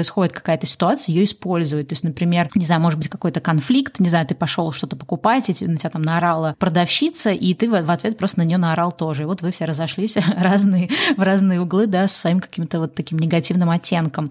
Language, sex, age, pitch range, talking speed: Russian, female, 20-39, 165-190 Hz, 220 wpm